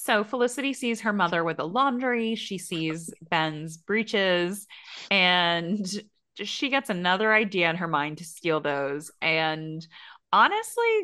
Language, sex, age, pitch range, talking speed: English, female, 20-39, 155-205 Hz, 135 wpm